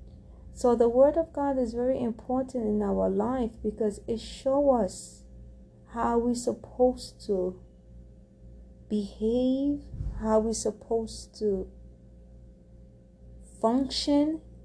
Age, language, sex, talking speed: 30-49, English, female, 100 wpm